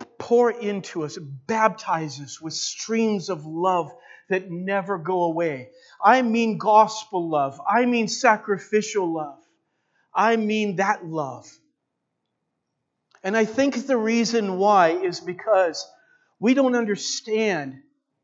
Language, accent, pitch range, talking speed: English, American, 170-220 Hz, 120 wpm